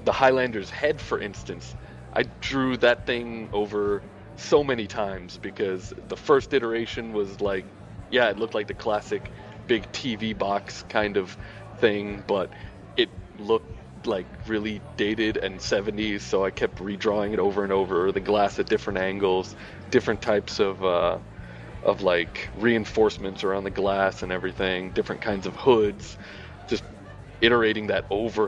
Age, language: 30-49, English